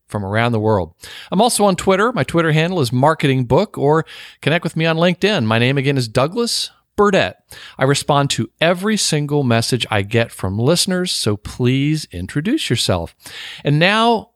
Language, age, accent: English, 50-69, American